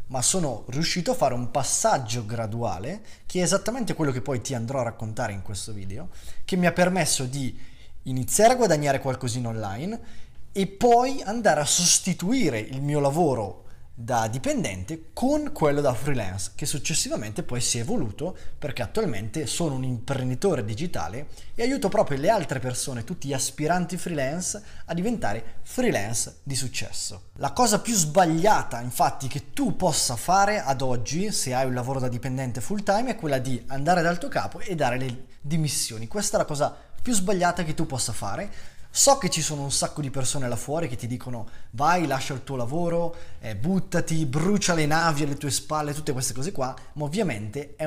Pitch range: 125-180 Hz